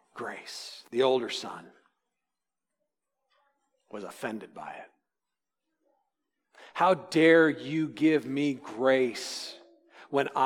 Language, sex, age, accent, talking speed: English, male, 40-59, American, 85 wpm